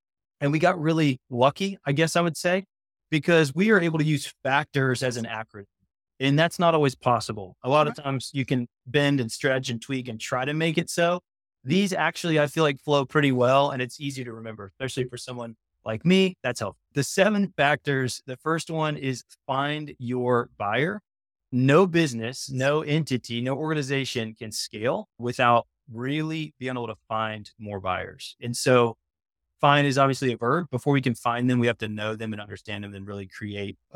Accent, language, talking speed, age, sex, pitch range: American, English, 195 wpm, 30-49, male, 115-155 Hz